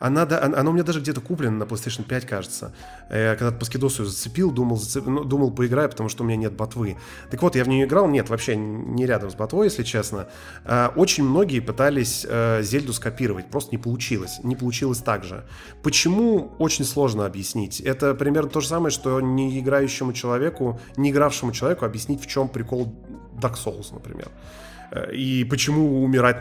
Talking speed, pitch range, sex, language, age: 175 wpm, 110-145 Hz, male, Russian, 20-39